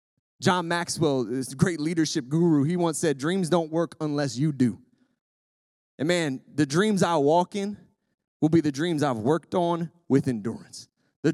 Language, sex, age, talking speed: English, male, 20-39, 170 wpm